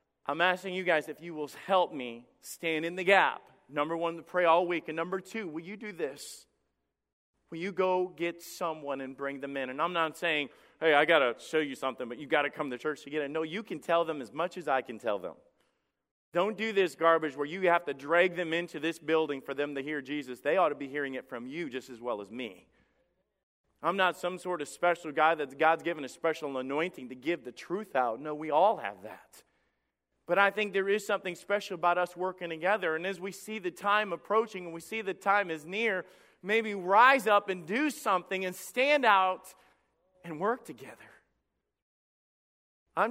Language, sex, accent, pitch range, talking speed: English, male, American, 150-195 Hz, 225 wpm